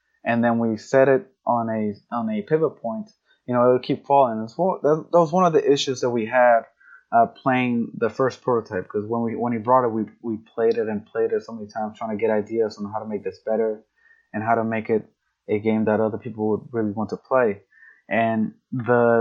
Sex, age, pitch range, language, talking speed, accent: male, 20-39, 110-130 Hz, English, 235 wpm, American